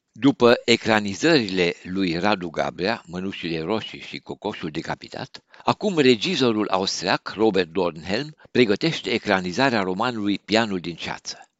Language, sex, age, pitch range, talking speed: Romanian, male, 60-79, 95-130 Hz, 110 wpm